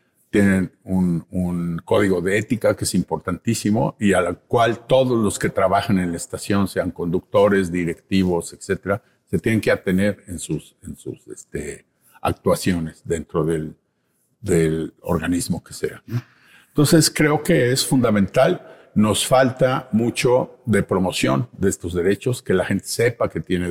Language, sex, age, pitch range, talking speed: Spanish, male, 50-69, 95-125 Hz, 150 wpm